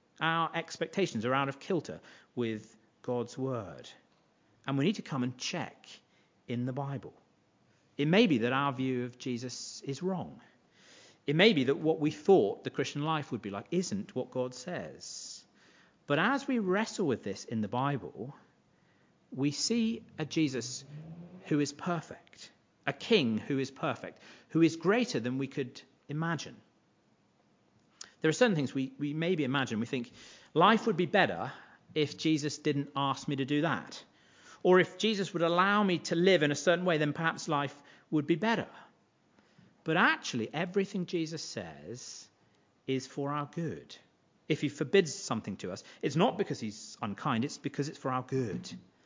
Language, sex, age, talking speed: English, male, 50-69, 170 wpm